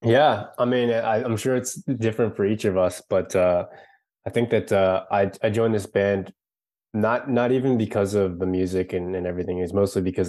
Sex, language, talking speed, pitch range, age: male, English, 210 wpm, 95-105 Hz, 20-39